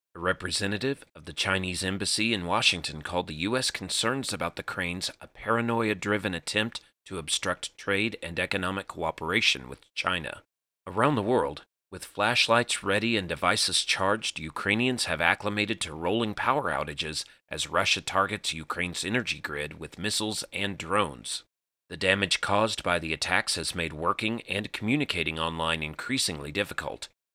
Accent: American